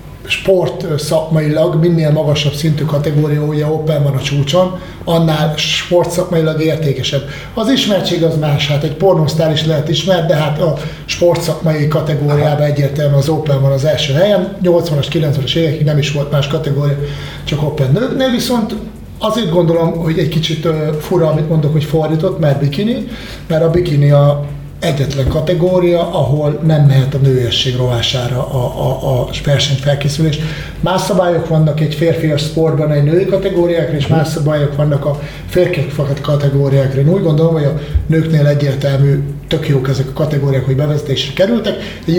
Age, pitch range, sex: 30-49, 145-165 Hz, male